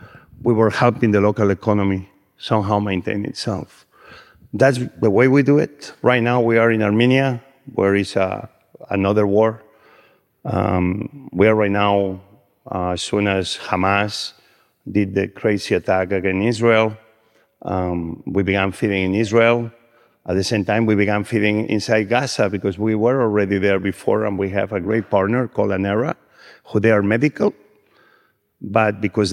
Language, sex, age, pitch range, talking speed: English, male, 50-69, 100-115 Hz, 155 wpm